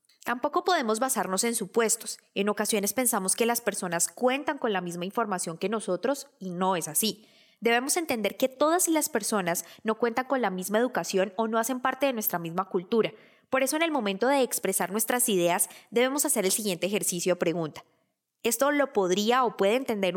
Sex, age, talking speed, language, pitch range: female, 20-39, 190 wpm, Spanish, 195-265 Hz